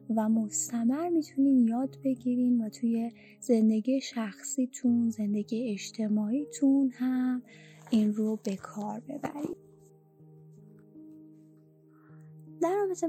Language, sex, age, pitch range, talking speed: Persian, female, 20-39, 210-245 Hz, 85 wpm